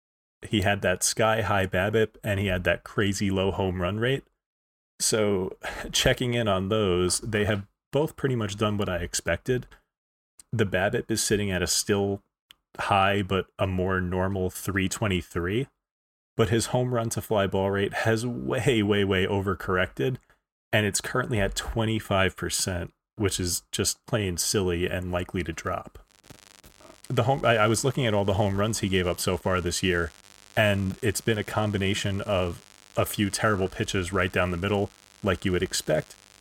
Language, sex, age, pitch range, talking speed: English, male, 30-49, 90-110 Hz, 170 wpm